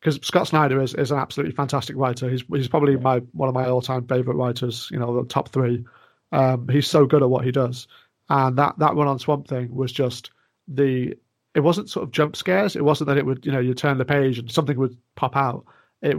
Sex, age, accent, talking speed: male, 30-49, British, 240 wpm